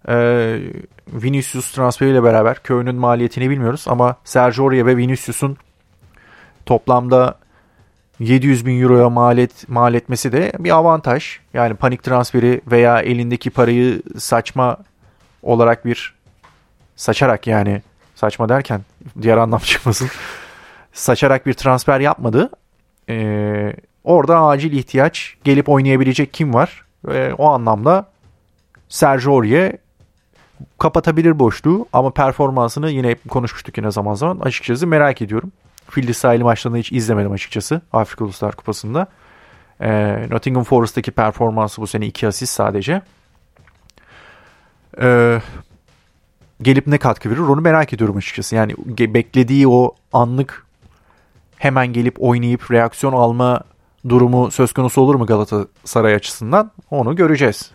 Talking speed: 115 wpm